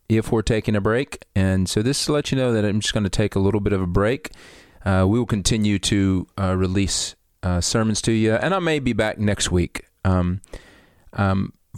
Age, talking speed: 30-49, 220 wpm